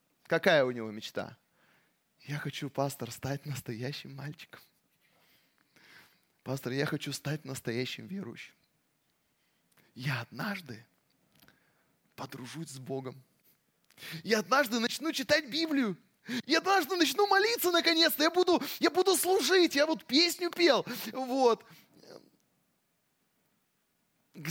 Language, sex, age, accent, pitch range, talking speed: Russian, male, 20-39, native, 185-275 Hz, 100 wpm